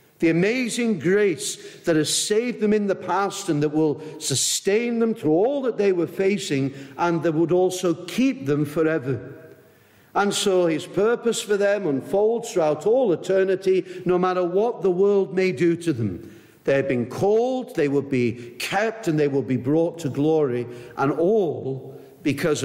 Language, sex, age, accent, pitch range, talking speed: English, male, 50-69, British, 135-195 Hz, 170 wpm